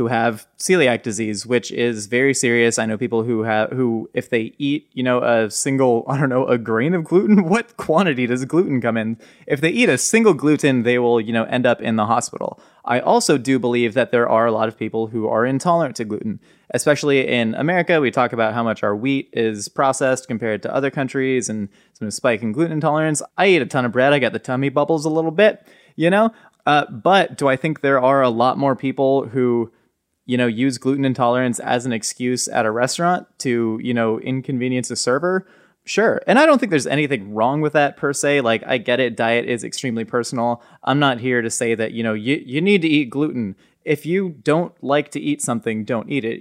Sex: male